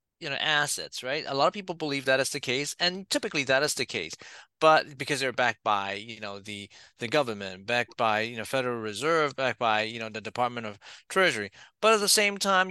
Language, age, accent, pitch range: English, 30-49, American, 120-155 Hz